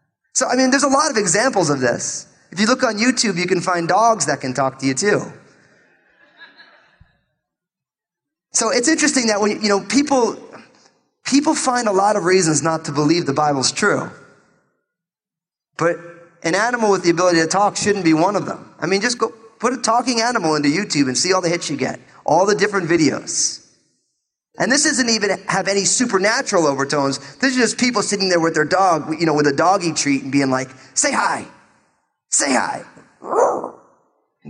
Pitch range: 155-225 Hz